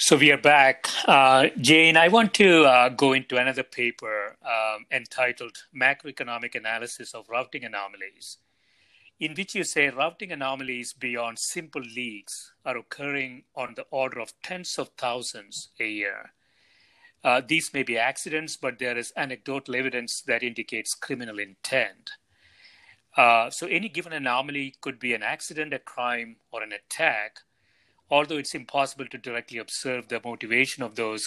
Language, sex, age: English, male, 40-59